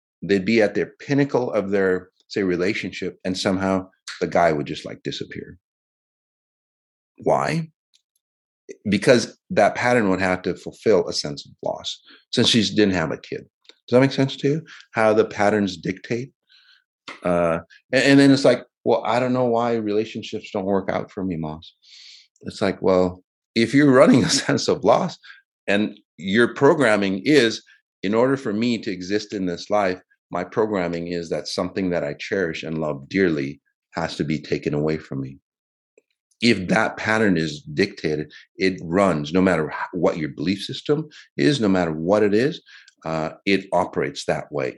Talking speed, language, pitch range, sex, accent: 170 wpm, English, 85-115 Hz, male, American